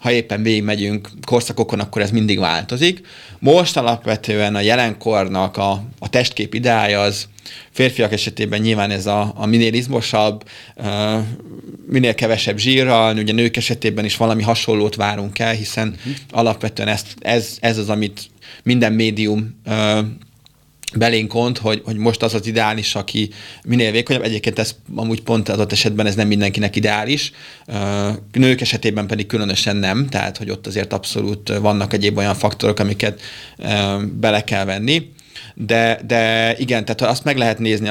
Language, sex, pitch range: Hungarian, male, 105-115 Hz